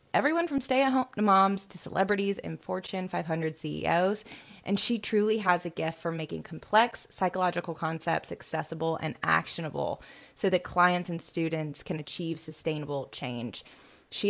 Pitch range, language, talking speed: 160-190 Hz, English, 145 wpm